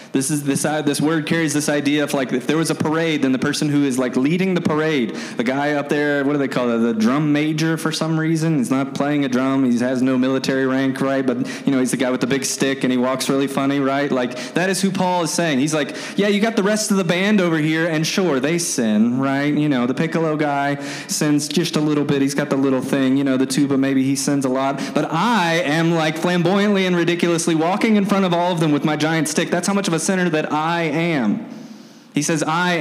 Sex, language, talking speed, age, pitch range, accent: male, English, 265 wpm, 20-39, 135-200 Hz, American